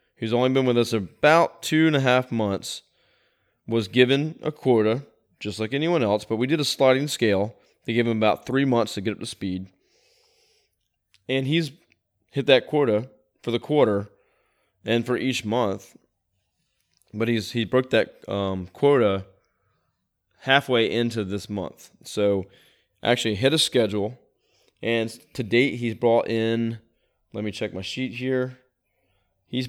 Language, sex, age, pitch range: English, male, 20-39, 105-130 Hz